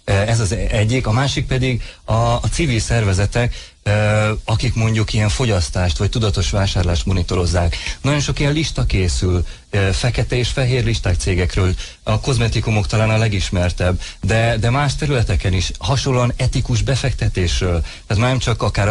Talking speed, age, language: 145 wpm, 30-49, Hungarian